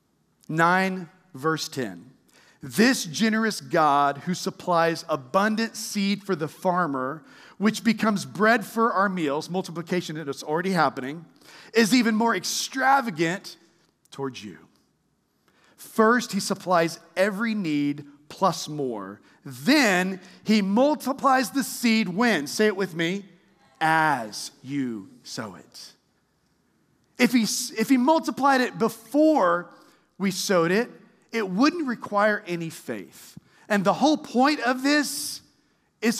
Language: English